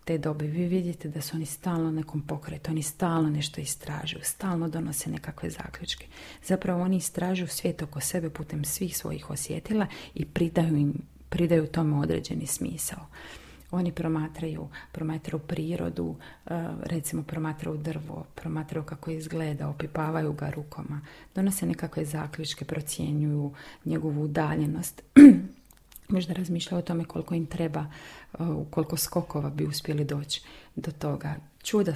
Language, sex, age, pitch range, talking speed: Croatian, female, 30-49, 150-170 Hz, 130 wpm